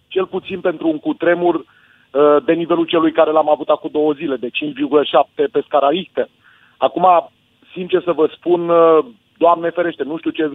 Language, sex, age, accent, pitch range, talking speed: Romanian, male, 30-49, native, 140-165 Hz, 170 wpm